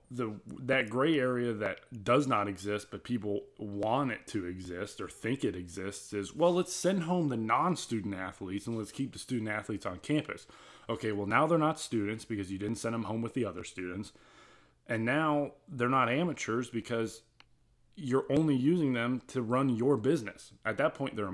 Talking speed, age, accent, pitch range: 190 wpm, 20-39, American, 105-130 Hz